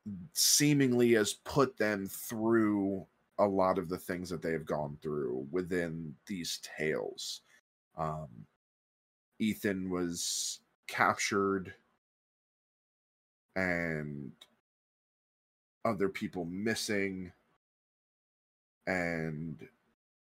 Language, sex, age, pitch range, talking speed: English, male, 20-39, 80-105 Hz, 80 wpm